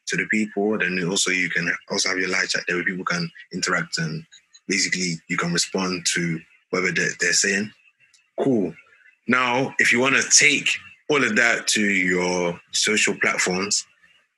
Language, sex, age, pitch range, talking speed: English, male, 20-39, 100-125 Hz, 165 wpm